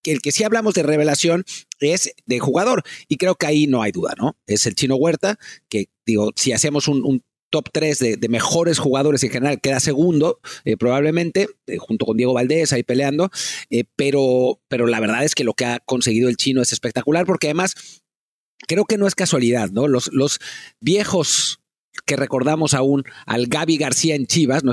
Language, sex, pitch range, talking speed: Spanish, male, 120-160 Hz, 200 wpm